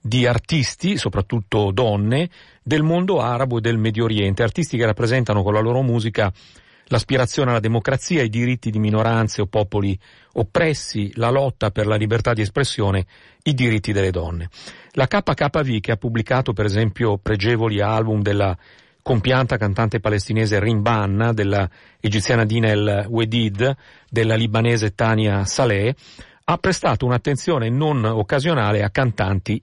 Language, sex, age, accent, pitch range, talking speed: Italian, male, 40-59, native, 105-130 Hz, 140 wpm